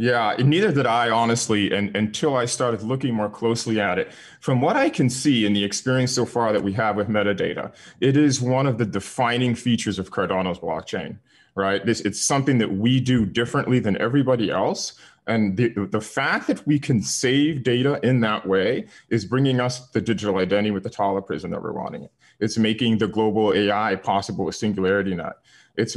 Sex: male